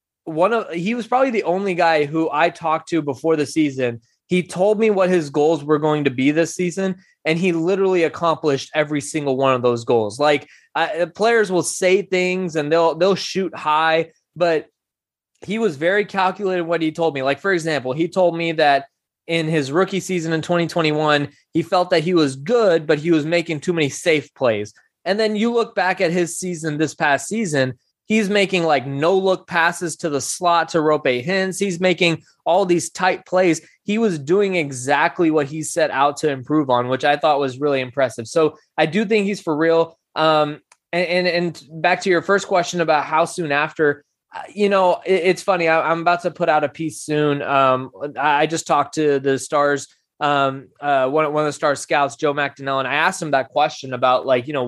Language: English